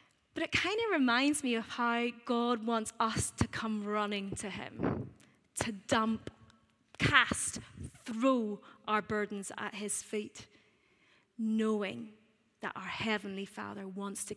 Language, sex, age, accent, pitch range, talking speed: English, female, 20-39, British, 200-225 Hz, 135 wpm